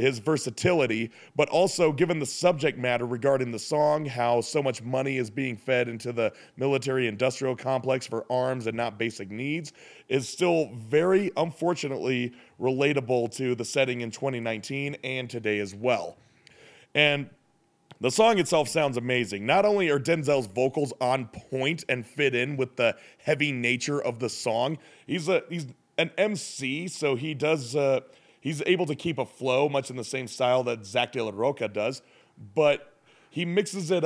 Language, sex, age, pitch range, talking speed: English, male, 30-49, 120-150 Hz, 170 wpm